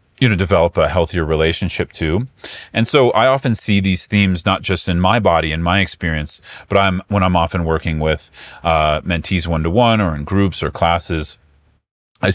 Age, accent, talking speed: 30-49, American, 195 wpm